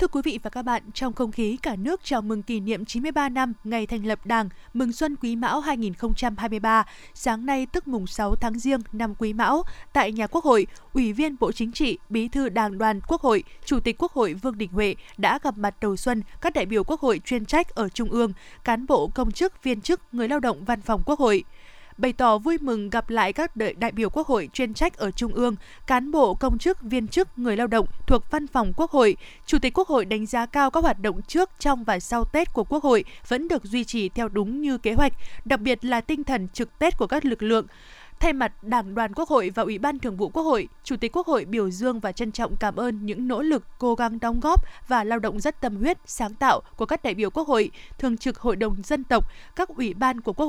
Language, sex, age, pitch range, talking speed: Vietnamese, female, 20-39, 225-285 Hz, 250 wpm